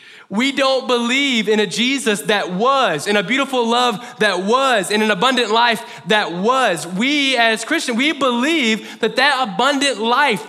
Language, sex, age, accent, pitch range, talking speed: English, male, 20-39, American, 195-250 Hz, 165 wpm